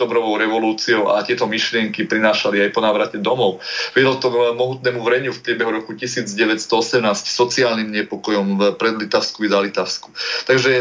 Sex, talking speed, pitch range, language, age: male, 140 wpm, 105-125 Hz, Slovak, 30-49